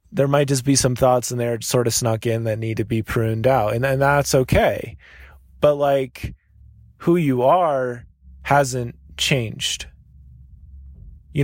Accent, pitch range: American, 120-140 Hz